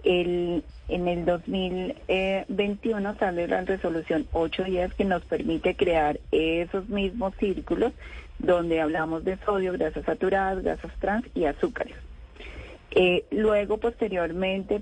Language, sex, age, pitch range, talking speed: Spanish, female, 30-49, 160-195 Hz, 110 wpm